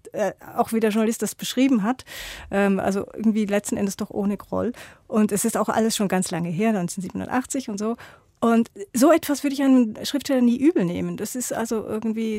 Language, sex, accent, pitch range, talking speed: German, female, German, 215-265 Hz, 205 wpm